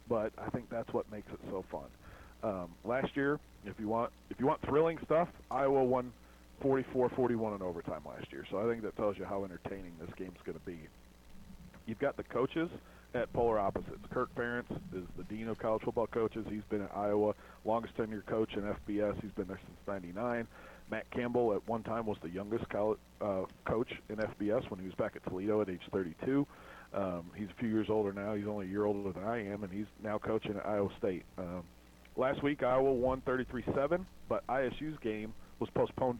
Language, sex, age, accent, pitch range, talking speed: English, male, 40-59, American, 100-120 Hz, 210 wpm